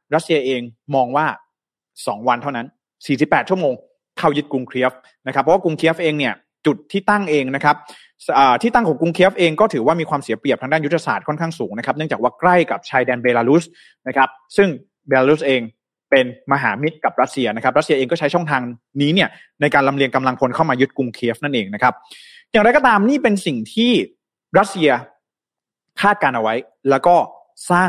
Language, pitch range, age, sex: Thai, 130-170 Hz, 20-39, male